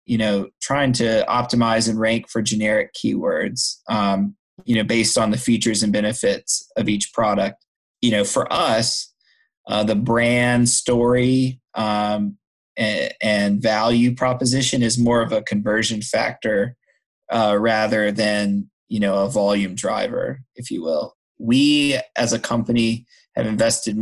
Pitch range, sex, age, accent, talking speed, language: 105-120 Hz, male, 30-49, American, 140 wpm, English